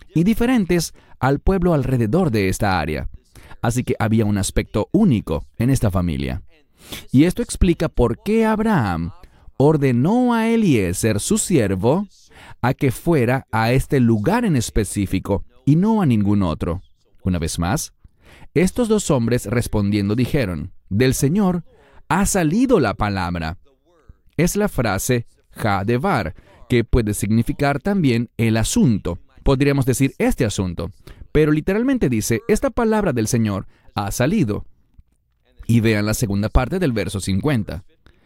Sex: male